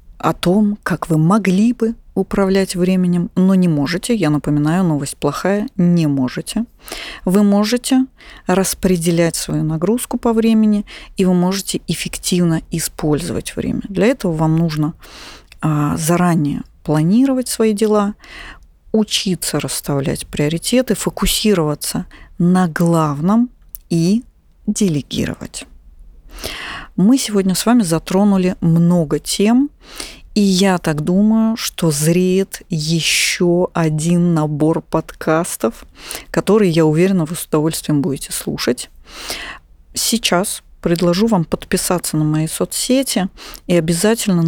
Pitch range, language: 160-205 Hz, Russian